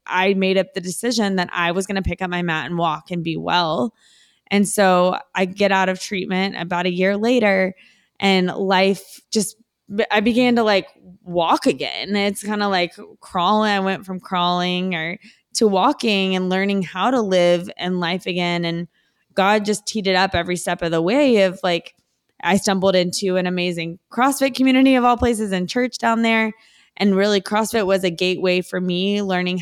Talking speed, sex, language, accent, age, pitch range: 190 wpm, female, English, American, 20-39, 175-205 Hz